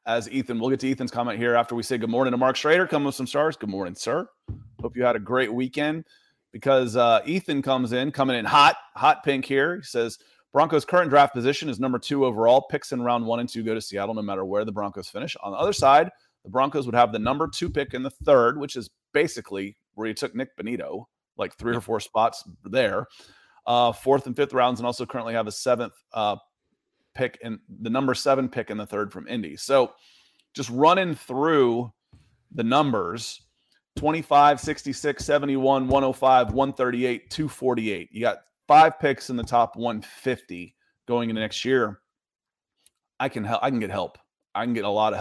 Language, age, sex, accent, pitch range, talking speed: English, 30-49, male, American, 115-135 Hz, 205 wpm